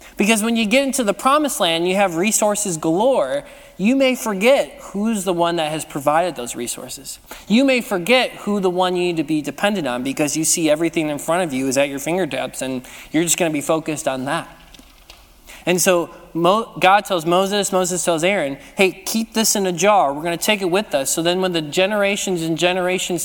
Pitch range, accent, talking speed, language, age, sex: 155-200 Hz, American, 215 wpm, English, 20-39, male